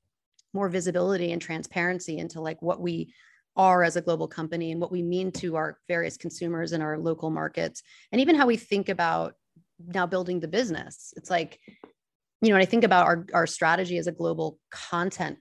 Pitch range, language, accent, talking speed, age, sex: 165-190 Hz, English, American, 195 wpm, 30-49, female